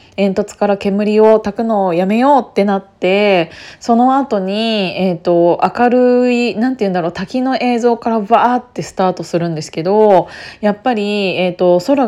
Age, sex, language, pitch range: 20-39, female, Japanese, 185-235 Hz